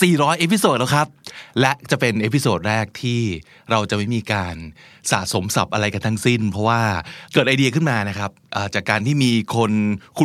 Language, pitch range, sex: Thai, 110-140 Hz, male